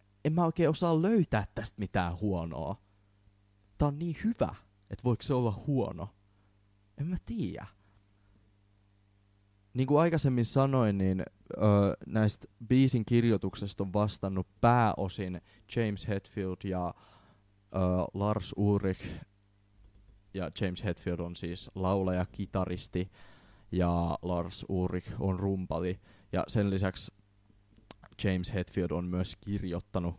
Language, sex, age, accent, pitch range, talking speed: Finnish, male, 20-39, native, 95-105 Hz, 115 wpm